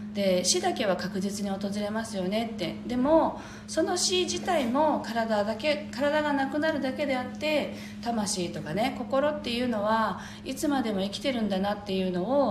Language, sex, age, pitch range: Japanese, female, 40-59, 175-260 Hz